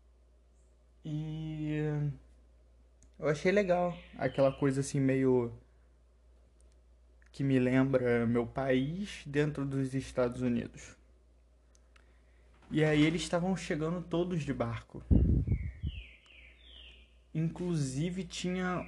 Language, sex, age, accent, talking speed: Portuguese, male, 20-39, Brazilian, 85 wpm